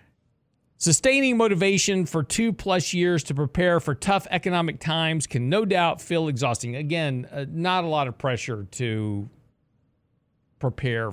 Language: English